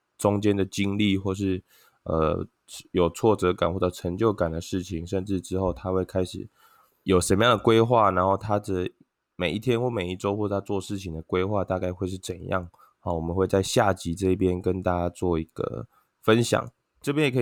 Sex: male